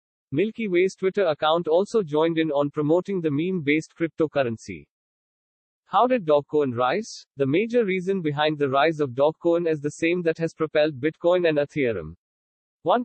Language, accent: English, Indian